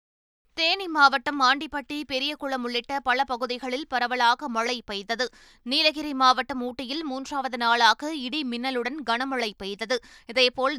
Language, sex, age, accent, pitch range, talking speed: Tamil, female, 20-39, native, 235-275 Hz, 110 wpm